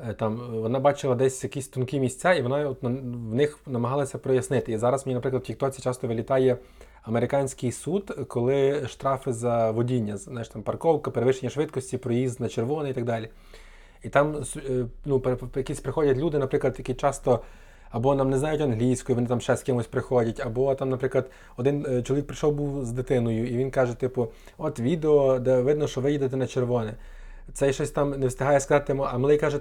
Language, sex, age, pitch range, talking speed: Ukrainian, male, 20-39, 125-150 Hz, 185 wpm